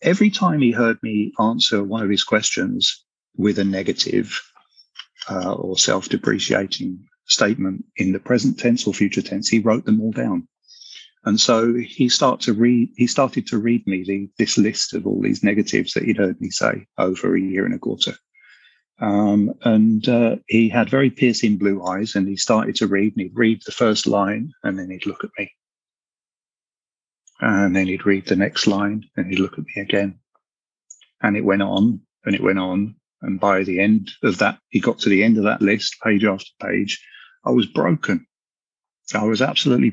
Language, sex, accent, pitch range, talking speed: English, male, British, 100-115 Hz, 190 wpm